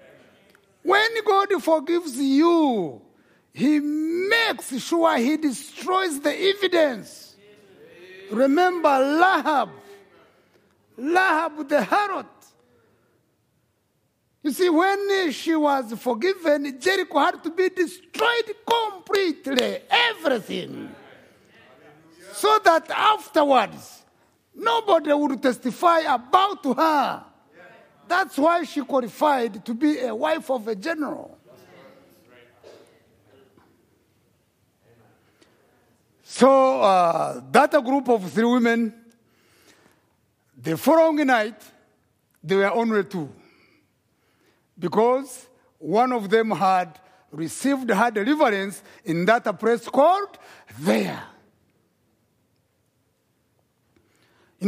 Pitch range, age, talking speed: 230-340 Hz, 50-69, 85 wpm